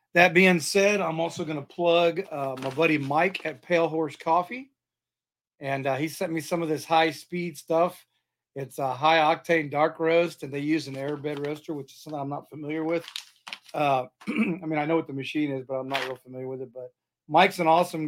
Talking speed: 210 wpm